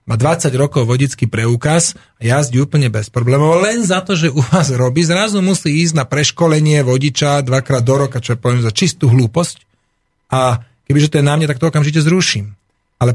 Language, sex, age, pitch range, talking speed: Slovak, male, 40-59, 125-160 Hz, 195 wpm